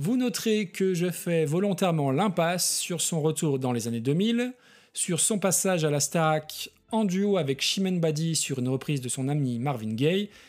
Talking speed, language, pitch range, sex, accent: 190 wpm, French, 140-200 Hz, male, French